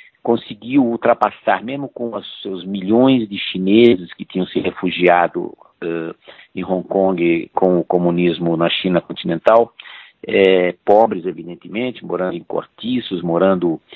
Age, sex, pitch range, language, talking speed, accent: 50-69, male, 90-125 Hz, Portuguese, 125 wpm, Brazilian